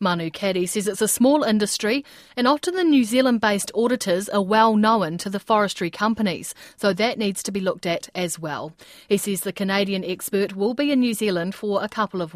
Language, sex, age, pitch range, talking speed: English, female, 30-49, 185-240 Hz, 210 wpm